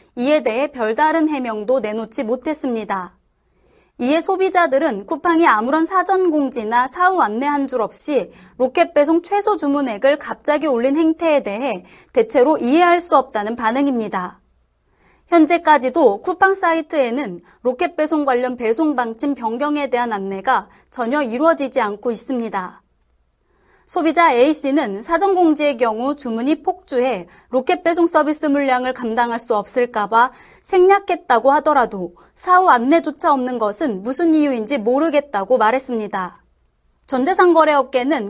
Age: 30-49